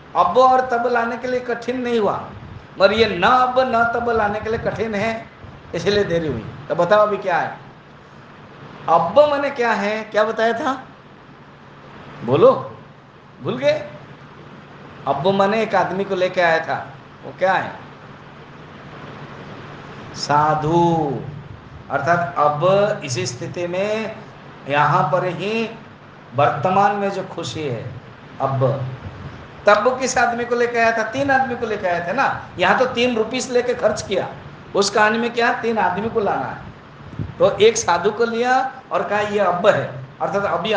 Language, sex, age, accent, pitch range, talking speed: Hindi, male, 50-69, native, 170-235 Hz, 160 wpm